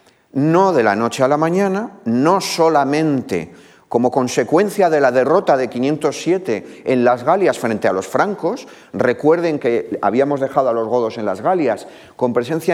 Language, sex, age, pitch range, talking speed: Spanish, male, 40-59, 115-165 Hz, 165 wpm